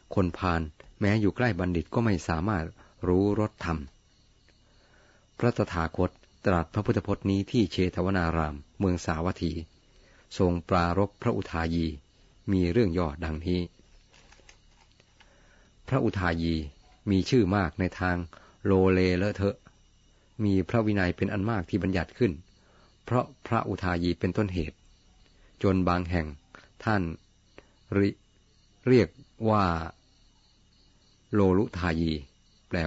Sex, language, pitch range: male, Thai, 85-100 Hz